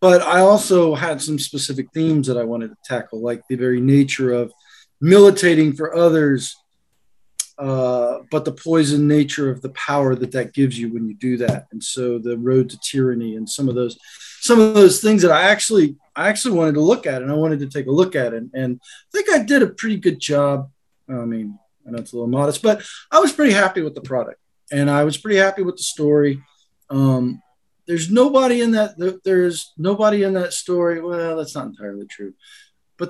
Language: English